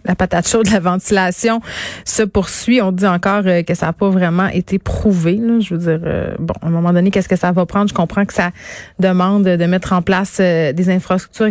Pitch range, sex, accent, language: 180-210 Hz, female, Canadian, French